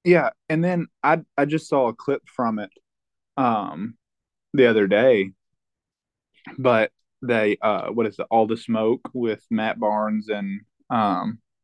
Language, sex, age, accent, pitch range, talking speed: English, male, 20-39, American, 110-140 Hz, 150 wpm